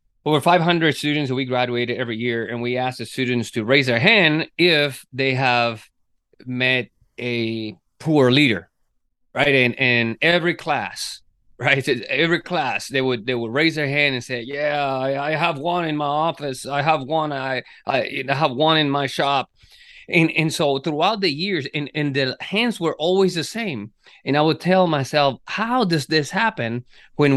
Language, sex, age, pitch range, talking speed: English, male, 30-49, 125-165 Hz, 180 wpm